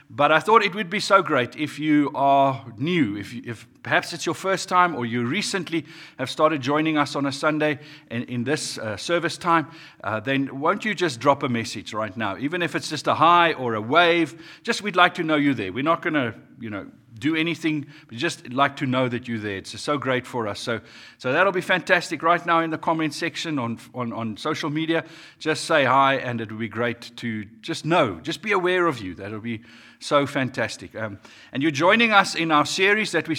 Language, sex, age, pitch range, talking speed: English, male, 50-69, 135-180 Hz, 230 wpm